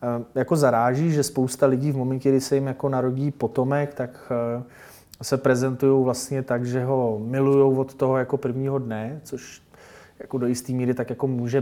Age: 20-39